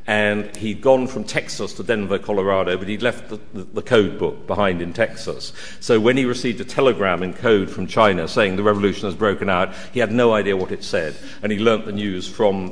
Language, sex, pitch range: English, male, 90-115 Hz